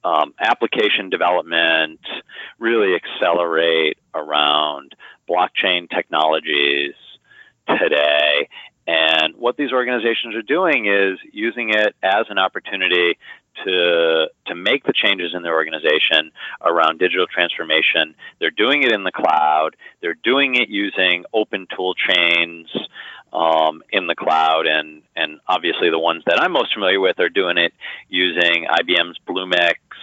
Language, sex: English, male